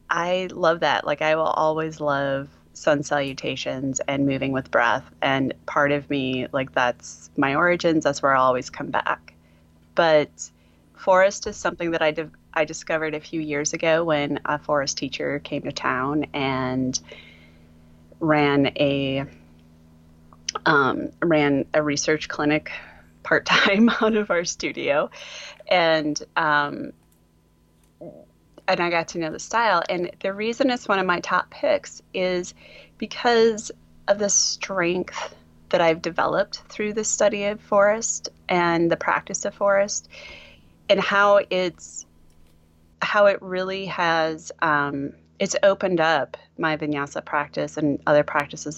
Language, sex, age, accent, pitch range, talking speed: English, female, 30-49, American, 135-175 Hz, 140 wpm